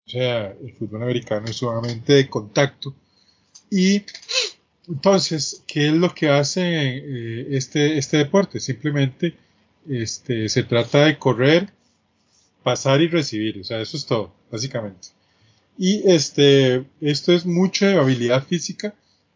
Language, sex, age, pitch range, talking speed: Spanish, male, 20-39, 115-160 Hz, 130 wpm